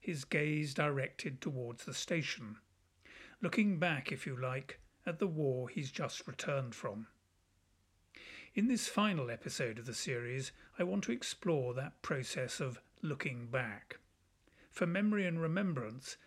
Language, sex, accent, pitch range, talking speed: English, male, British, 125-170 Hz, 140 wpm